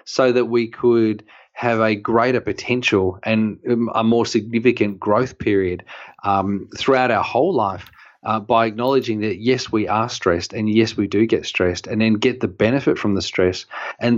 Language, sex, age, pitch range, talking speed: English, male, 30-49, 105-125 Hz, 180 wpm